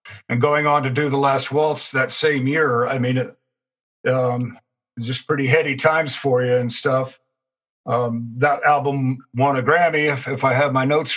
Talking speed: 190 wpm